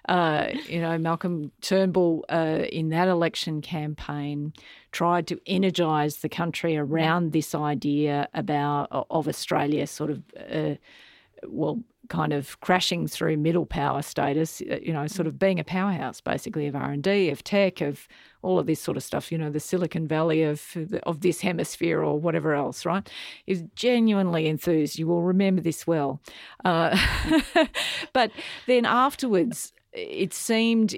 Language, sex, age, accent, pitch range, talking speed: English, female, 50-69, Australian, 155-185 Hz, 150 wpm